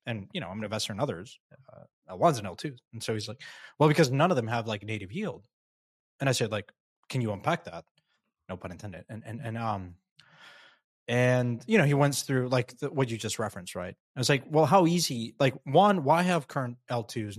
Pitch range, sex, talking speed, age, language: 110-135 Hz, male, 230 wpm, 20-39, English